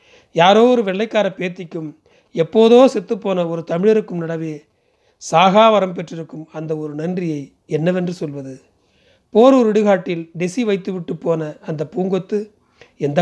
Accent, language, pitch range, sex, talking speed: native, Tamil, 160-210 Hz, male, 120 wpm